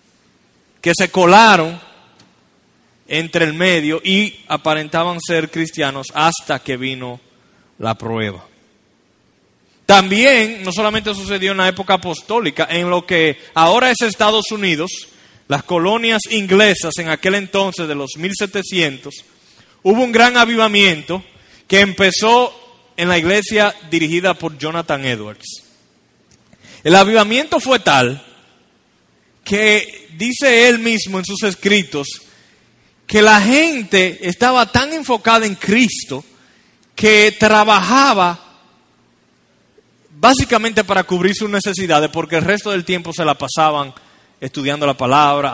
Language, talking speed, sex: Spanish, 115 wpm, male